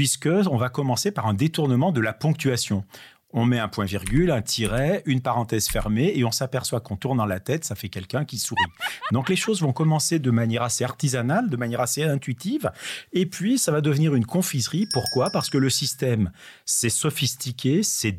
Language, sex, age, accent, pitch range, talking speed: French, male, 40-59, French, 110-150 Hz, 200 wpm